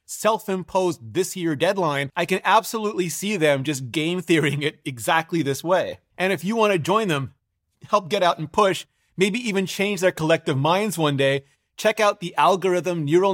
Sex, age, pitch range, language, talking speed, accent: male, 30-49, 150-195 Hz, English, 180 wpm, American